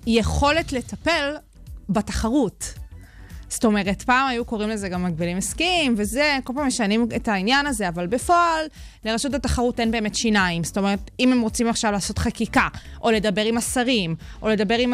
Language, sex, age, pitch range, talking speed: Hebrew, female, 20-39, 200-265 Hz, 165 wpm